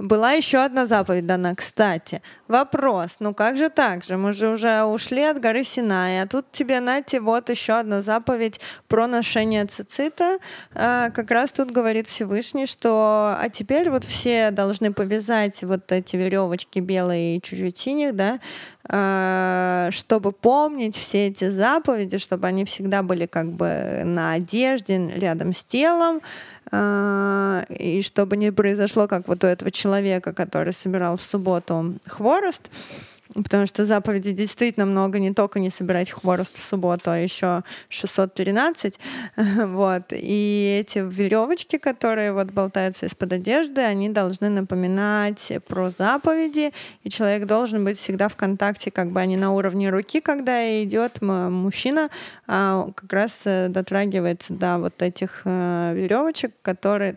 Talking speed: 135 wpm